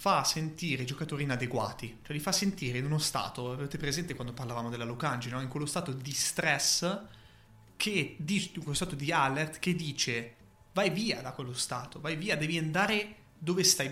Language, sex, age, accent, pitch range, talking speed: Italian, male, 20-39, native, 130-185 Hz, 190 wpm